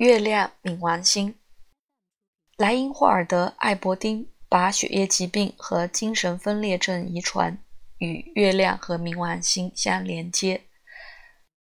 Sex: female